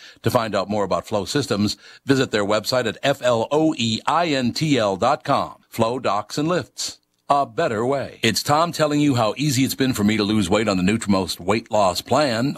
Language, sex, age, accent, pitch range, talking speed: English, male, 50-69, American, 100-130 Hz, 175 wpm